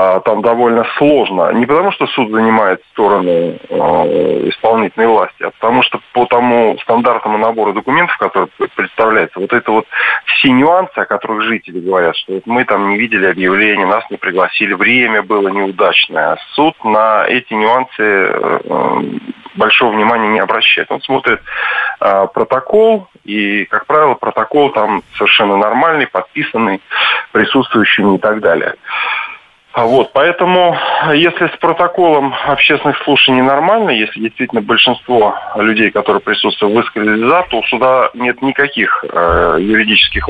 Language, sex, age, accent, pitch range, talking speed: Russian, male, 20-39, native, 110-170 Hz, 135 wpm